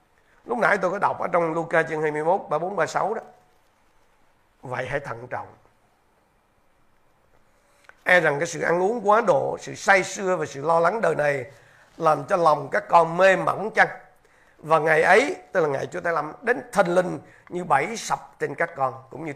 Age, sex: 60-79, male